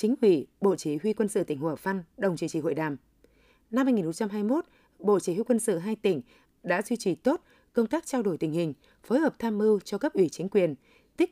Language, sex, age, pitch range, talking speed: Vietnamese, female, 20-39, 185-240 Hz, 235 wpm